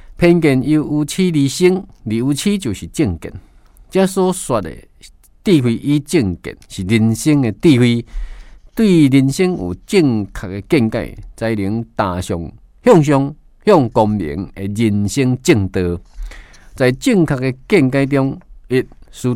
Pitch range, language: 100-145 Hz, Chinese